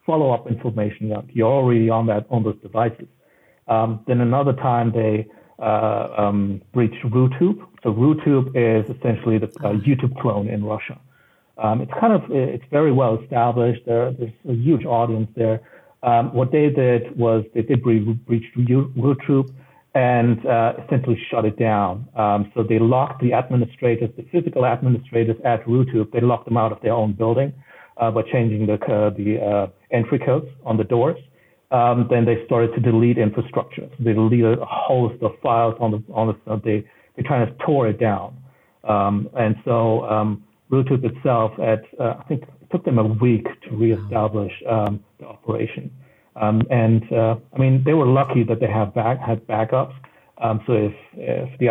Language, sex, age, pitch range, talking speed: English, male, 60-79, 110-130 Hz, 180 wpm